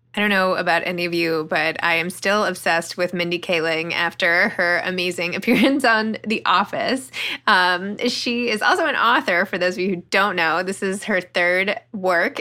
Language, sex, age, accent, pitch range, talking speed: English, female, 20-39, American, 165-210 Hz, 195 wpm